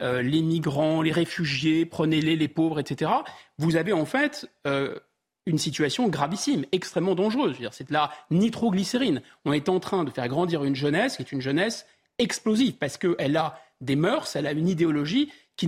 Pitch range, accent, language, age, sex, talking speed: 150-220 Hz, French, French, 30-49, male, 185 wpm